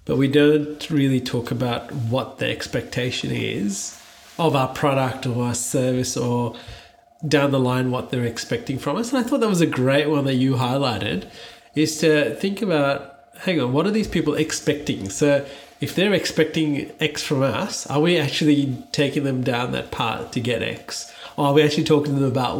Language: English